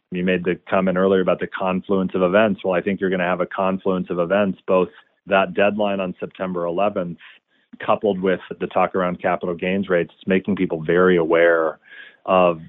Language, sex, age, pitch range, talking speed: English, male, 30-49, 85-95 Hz, 190 wpm